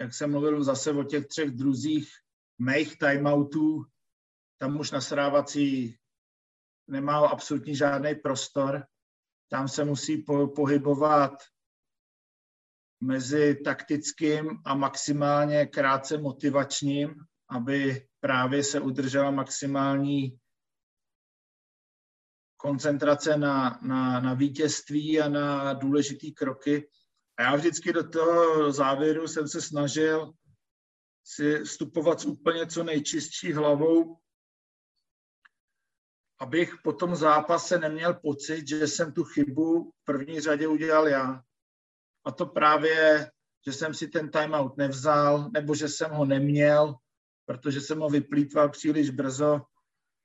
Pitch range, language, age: 135-155 Hz, Slovak, 50-69